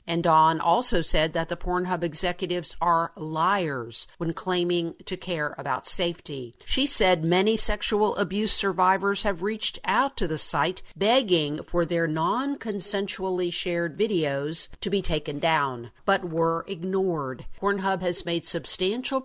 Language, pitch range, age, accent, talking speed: English, 165-200 Hz, 50-69, American, 140 wpm